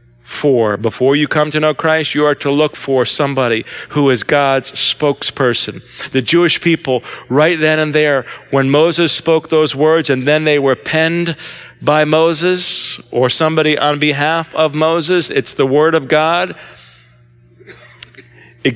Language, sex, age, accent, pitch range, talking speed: English, male, 50-69, American, 135-170 Hz, 155 wpm